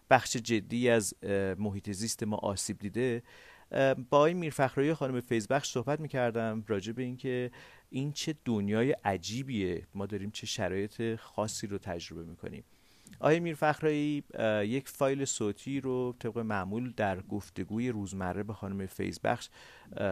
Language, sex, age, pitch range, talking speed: Persian, male, 40-59, 100-125 Hz, 130 wpm